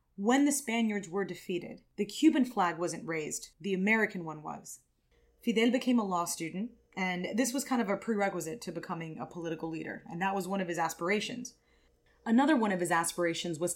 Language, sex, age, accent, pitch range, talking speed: English, female, 30-49, American, 175-235 Hz, 190 wpm